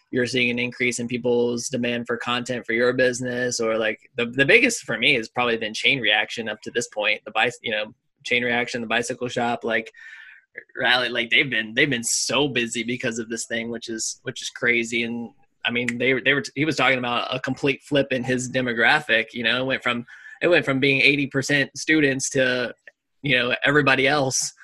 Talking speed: 215 wpm